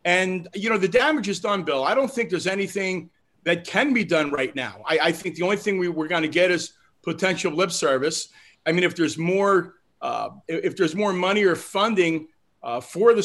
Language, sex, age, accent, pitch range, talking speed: English, male, 40-59, American, 160-205 Hz, 220 wpm